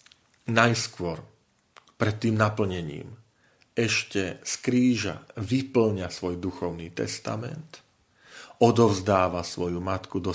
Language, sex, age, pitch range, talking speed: Slovak, male, 40-59, 90-110 Hz, 85 wpm